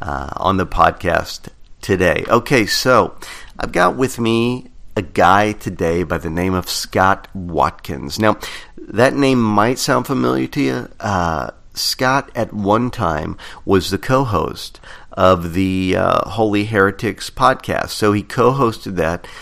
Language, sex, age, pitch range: English, male, 50-69, 90-115 Hz